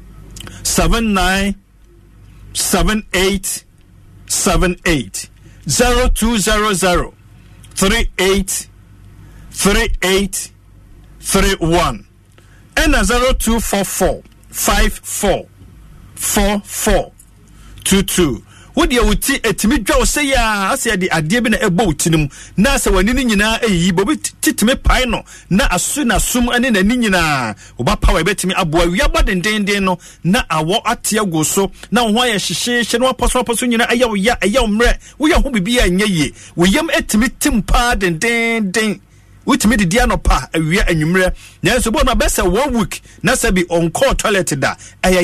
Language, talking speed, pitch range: English, 145 wpm, 175-230 Hz